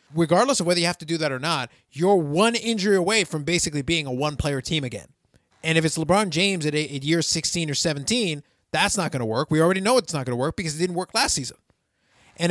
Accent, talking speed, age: American, 255 wpm, 30-49